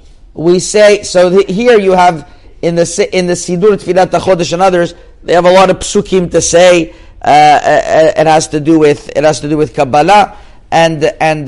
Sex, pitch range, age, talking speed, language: male, 150-185 Hz, 50-69, 200 wpm, English